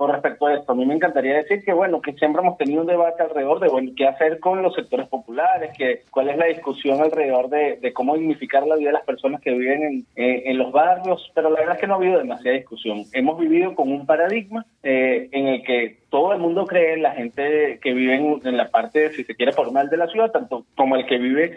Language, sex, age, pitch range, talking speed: Spanish, male, 30-49, 135-195 Hz, 255 wpm